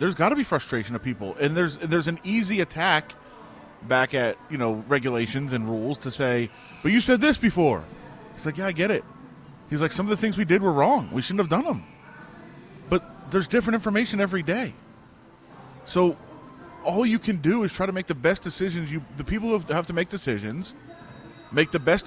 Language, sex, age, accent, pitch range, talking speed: English, male, 20-39, American, 155-240 Hz, 210 wpm